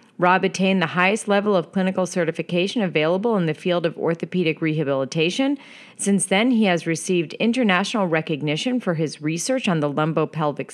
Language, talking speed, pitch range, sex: English, 155 wpm, 175-230 Hz, female